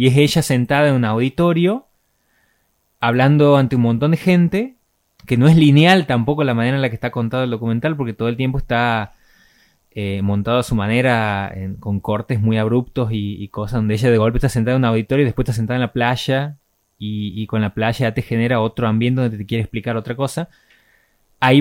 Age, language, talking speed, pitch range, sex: 20-39, Spanish, 215 wpm, 110-145 Hz, male